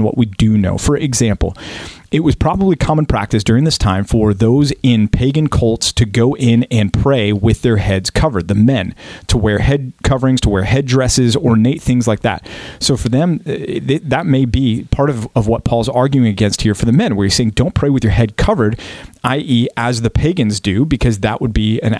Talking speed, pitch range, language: 210 wpm, 105-130 Hz, English